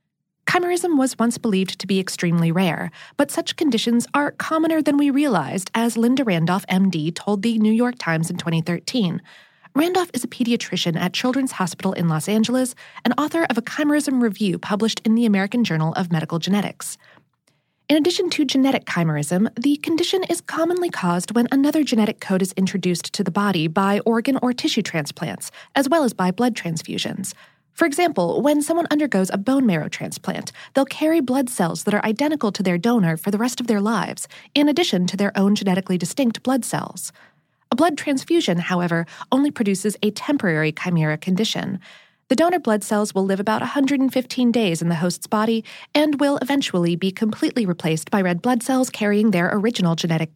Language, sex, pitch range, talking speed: English, female, 185-270 Hz, 180 wpm